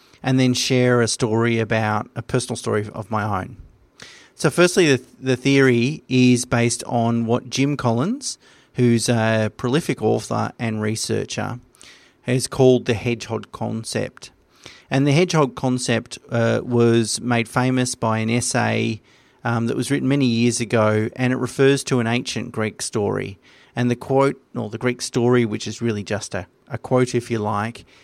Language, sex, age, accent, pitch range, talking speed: English, male, 40-59, Australian, 115-130 Hz, 165 wpm